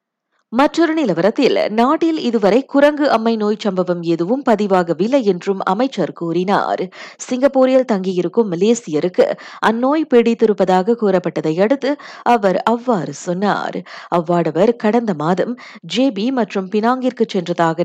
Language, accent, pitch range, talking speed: Tamil, native, 175-240 Hz, 100 wpm